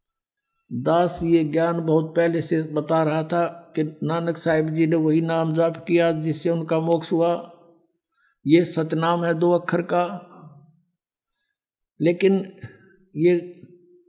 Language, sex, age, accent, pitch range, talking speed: Hindi, male, 60-79, native, 160-185 Hz, 130 wpm